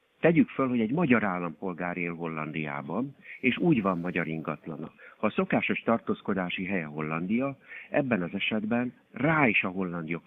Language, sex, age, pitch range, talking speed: Hungarian, male, 60-79, 90-115 Hz, 150 wpm